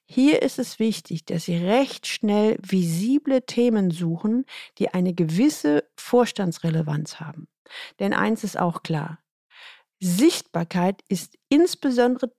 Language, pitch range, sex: German, 175-230 Hz, female